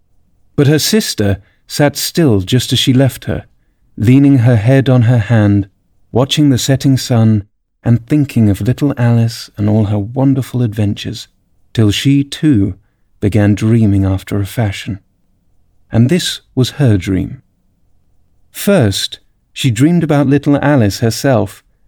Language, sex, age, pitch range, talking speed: English, male, 40-59, 100-130 Hz, 135 wpm